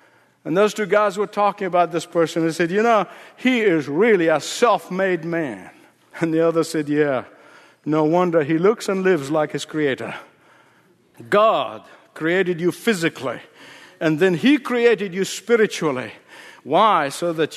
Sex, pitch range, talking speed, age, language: male, 165-265 Hz, 155 wpm, 60-79, English